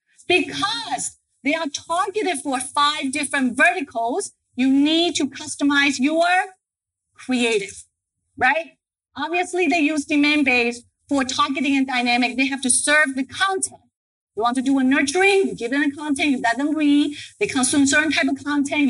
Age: 40-59